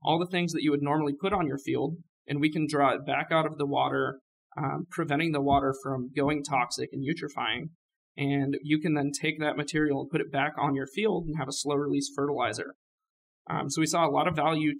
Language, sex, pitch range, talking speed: English, male, 140-155 Hz, 230 wpm